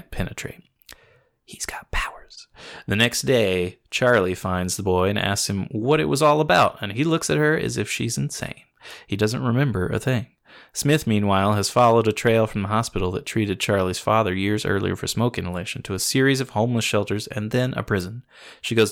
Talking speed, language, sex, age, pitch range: 200 wpm, English, male, 20-39, 100-120 Hz